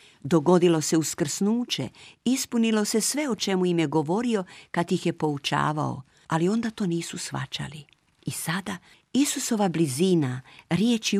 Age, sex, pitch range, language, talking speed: 50-69, female, 150-205 Hz, Croatian, 135 wpm